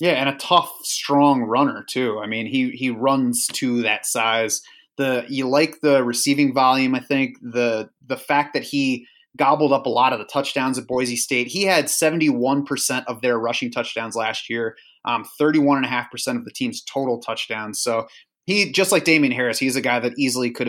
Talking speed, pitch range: 190 wpm, 120-155 Hz